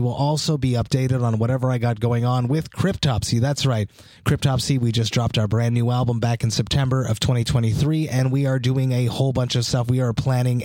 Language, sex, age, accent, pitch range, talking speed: English, male, 30-49, American, 115-140 Hz, 220 wpm